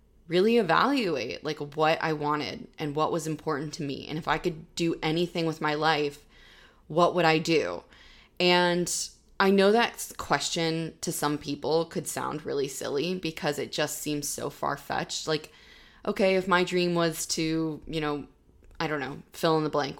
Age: 20-39